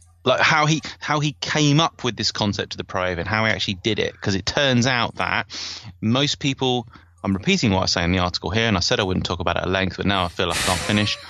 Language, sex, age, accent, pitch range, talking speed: English, male, 30-49, British, 90-115 Hz, 275 wpm